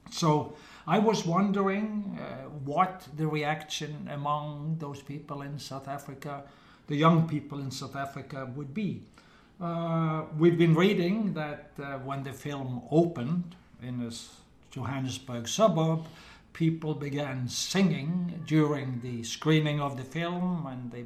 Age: 60-79